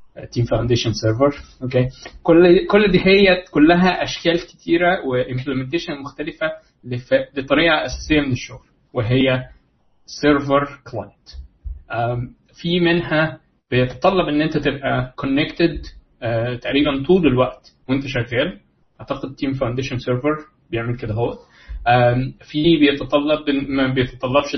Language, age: Arabic, 20-39